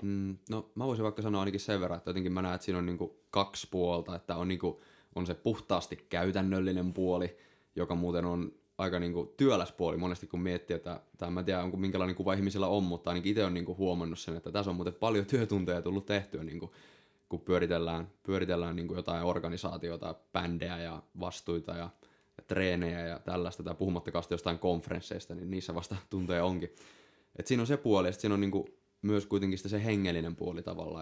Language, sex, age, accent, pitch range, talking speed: Finnish, male, 20-39, native, 85-100 Hz, 195 wpm